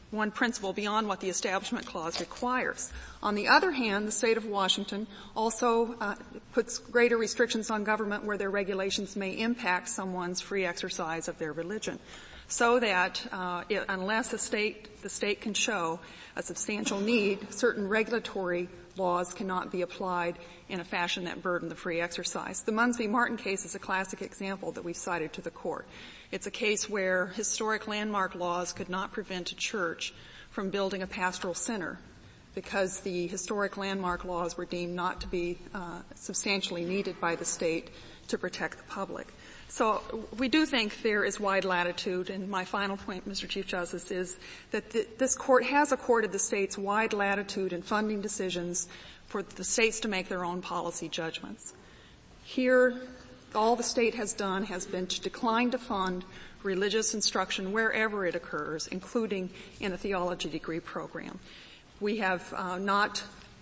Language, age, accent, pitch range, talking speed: English, 40-59, American, 180-220 Hz, 165 wpm